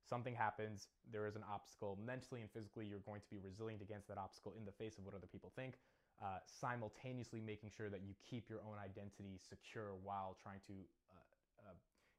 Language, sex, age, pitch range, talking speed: English, male, 20-39, 100-125 Hz, 200 wpm